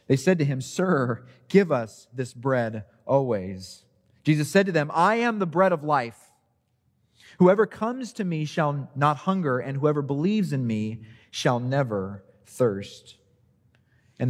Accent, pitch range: American, 110-140 Hz